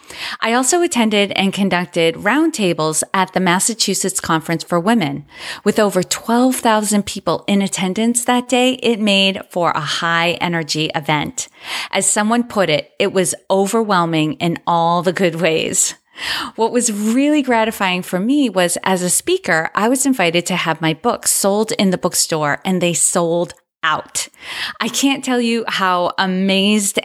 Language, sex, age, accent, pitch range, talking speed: English, female, 30-49, American, 175-225 Hz, 155 wpm